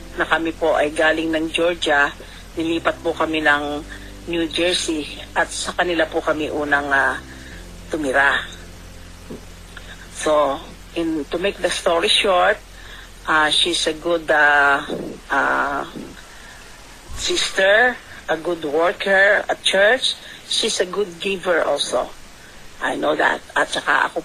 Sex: female